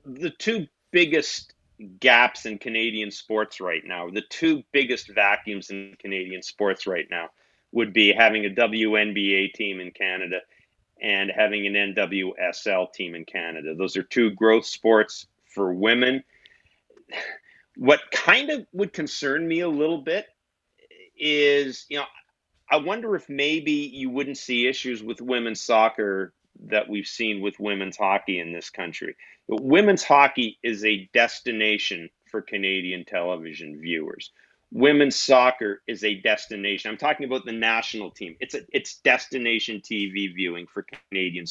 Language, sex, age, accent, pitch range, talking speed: English, male, 40-59, American, 100-130 Hz, 145 wpm